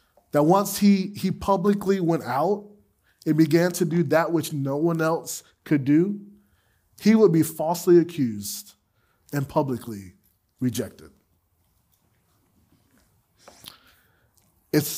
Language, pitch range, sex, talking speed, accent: English, 120-180 Hz, male, 110 wpm, American